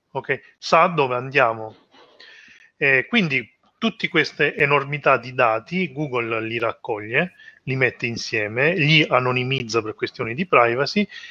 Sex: male